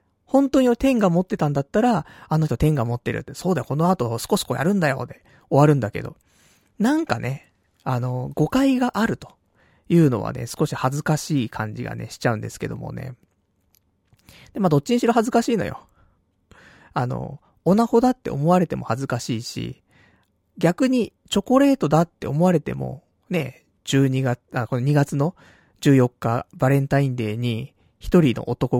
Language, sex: Japanese, male